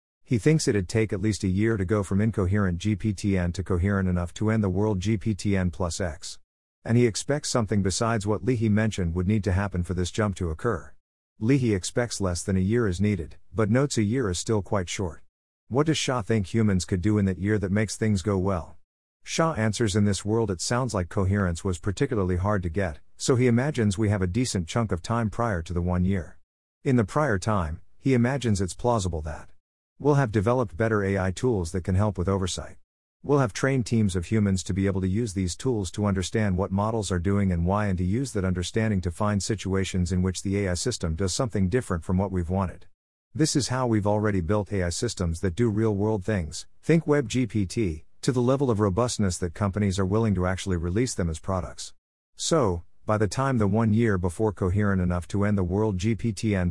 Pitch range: 90-115 Hz